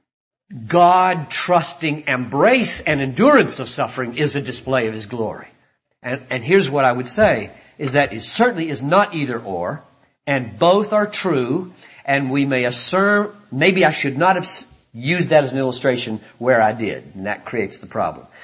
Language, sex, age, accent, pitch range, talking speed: English, male, 50-69, American, 130-210 Hz, 175 wpm